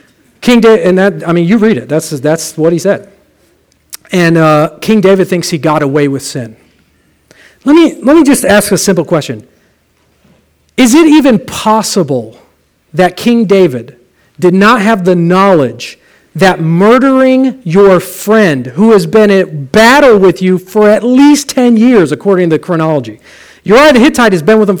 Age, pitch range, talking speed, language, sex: 40-59, 160-230 Hz, 175 wpm, English, male